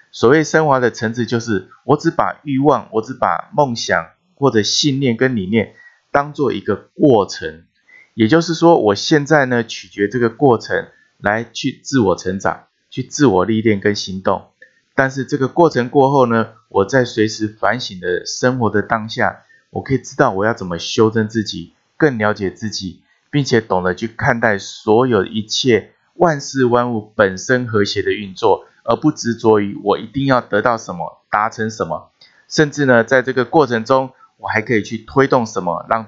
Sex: male